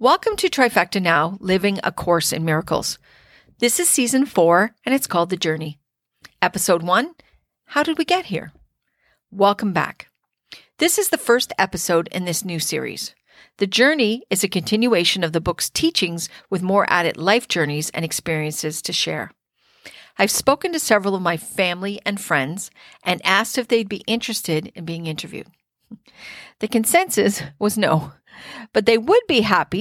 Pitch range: 165-230 Hz